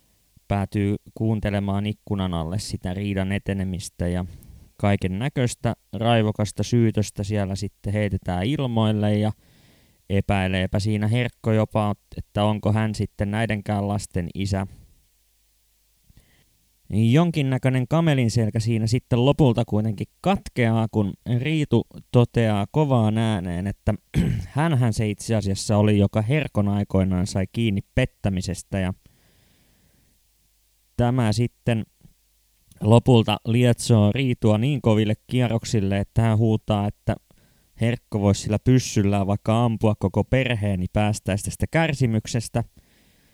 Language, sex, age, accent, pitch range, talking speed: Finnish, male, 20-39, native, 100-115 Hz, 105 wpm